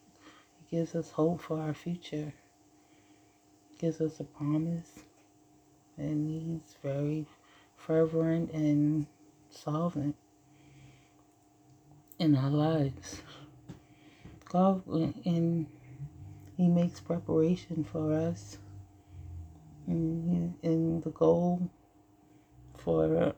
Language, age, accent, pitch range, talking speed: English, 30-49, American, 100-155 Hz, 80 wpm